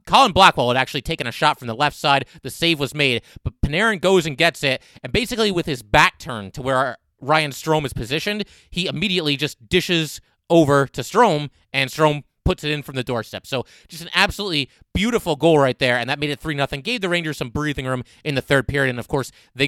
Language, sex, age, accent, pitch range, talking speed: English, male, 30-49, American, 130-175 Hz, 230 wpm